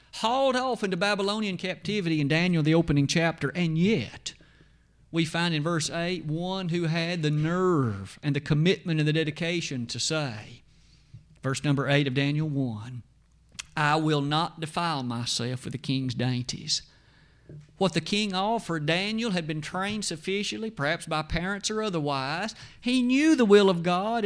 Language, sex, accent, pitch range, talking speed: English, male, American, 140-180 Hz, 160 wpm